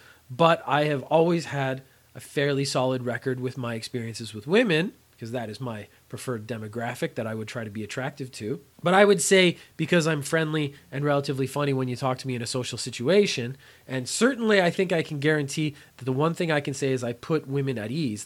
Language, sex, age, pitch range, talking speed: English, male, 30-49, 130-170 Hz, 220 wpm